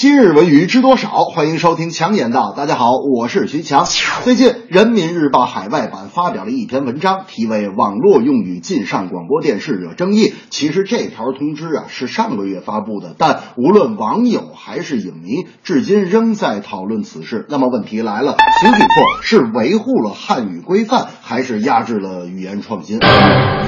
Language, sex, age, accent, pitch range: Chinese, male, 30-49, native, 165-230 Hz